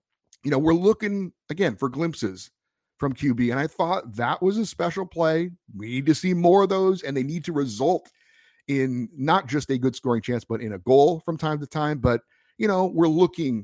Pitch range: 115-150 Hz